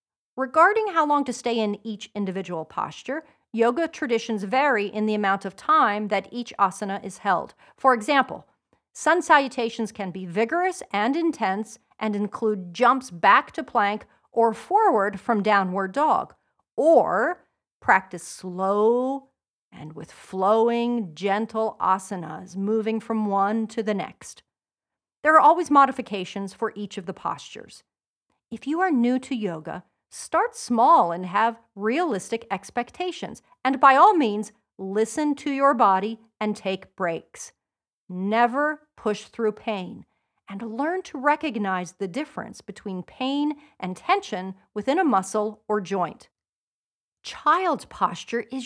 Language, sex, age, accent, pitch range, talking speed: English, female, 40-59, American, 200-275 Hz, 135 wpm